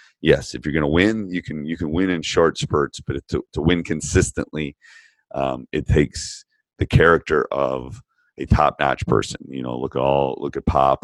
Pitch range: 70-90 Hz